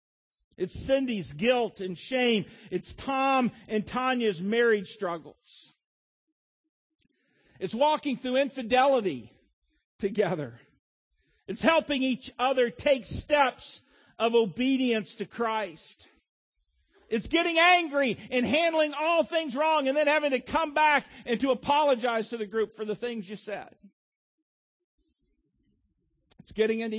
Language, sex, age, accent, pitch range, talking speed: English, male, 50-69, American, 175-270 Hz, 120 wpm